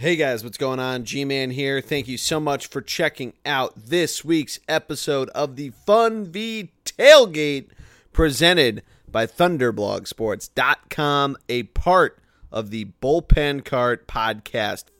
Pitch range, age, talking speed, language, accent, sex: 110-160 Hz, 30-49, 130 wpm, English, American, male